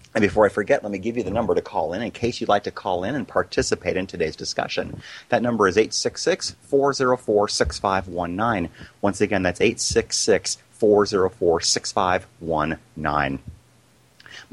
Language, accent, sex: English, American, male